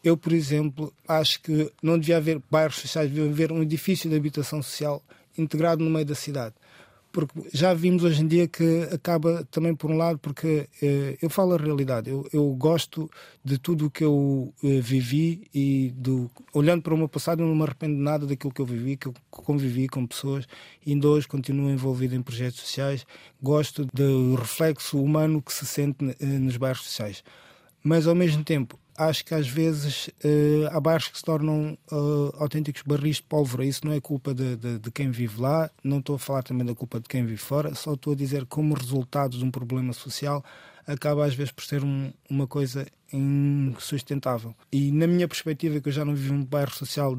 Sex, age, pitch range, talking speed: male, 20-39, 135-155 Hz, 205 wpm